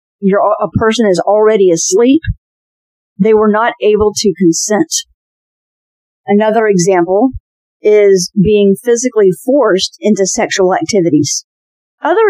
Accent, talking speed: American, 105 wpm